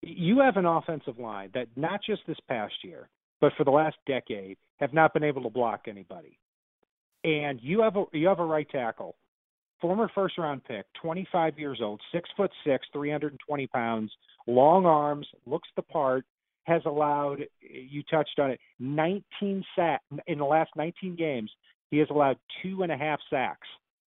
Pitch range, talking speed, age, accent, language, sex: 130-165 Hz, 185 wpm, 50-69, American, English, male